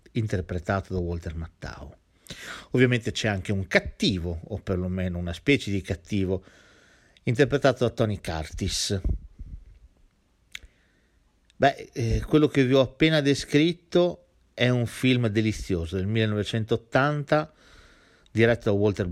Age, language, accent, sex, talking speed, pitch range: 50-69, Italian, native, male, 115 wpm, 90-120 Hz